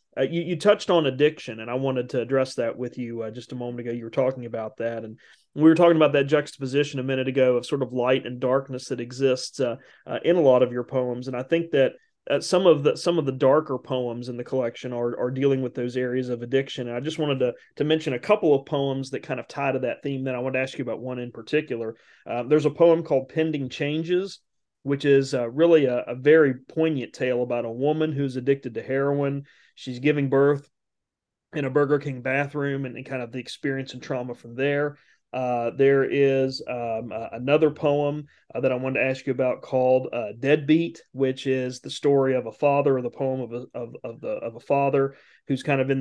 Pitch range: 125-145 Hz